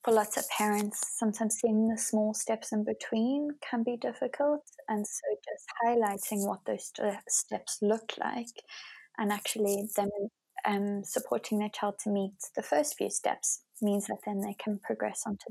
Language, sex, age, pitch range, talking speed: English, female, 20-39, 205-235 Hz, 175 wpm